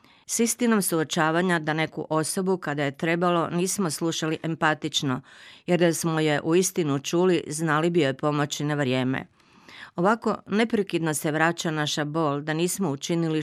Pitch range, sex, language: 145-175 Hz, female, Croatian